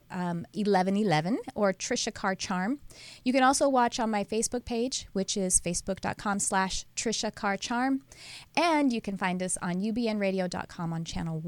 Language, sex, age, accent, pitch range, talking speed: English, female, 30-49, American, 180-230 Hz, 155 wpm